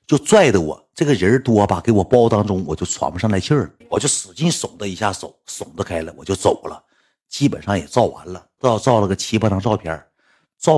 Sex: male